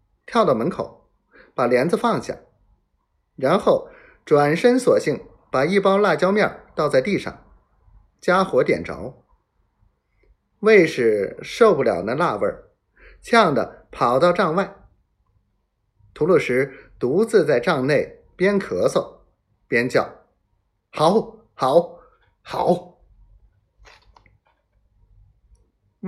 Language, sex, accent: Chinese, male, native